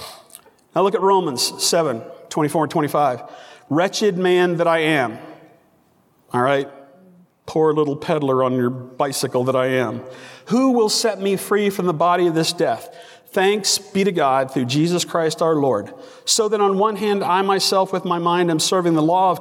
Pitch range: 150-185 Hz